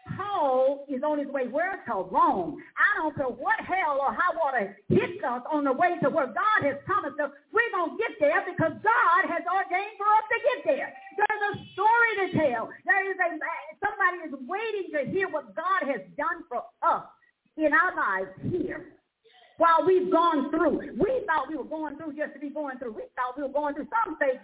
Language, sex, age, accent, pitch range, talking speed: English, female, 50-69, American, 295-390 Hz, 210 wpm